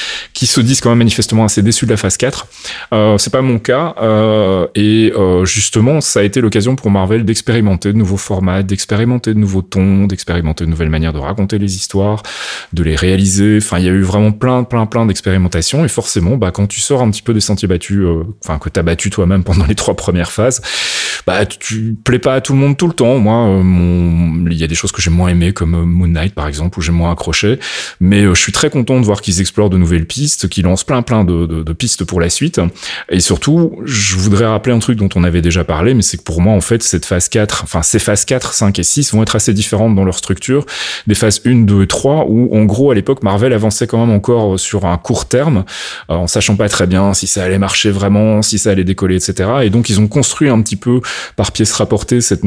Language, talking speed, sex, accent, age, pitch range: French, 250 wpm, male, French, 30-49, 90-115 Hz